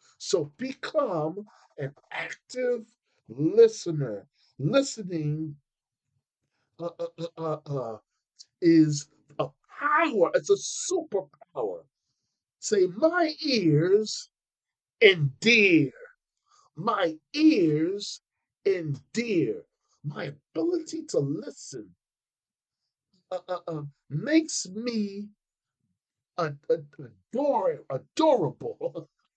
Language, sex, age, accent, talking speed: English, male, 50-69, American, 70 wpm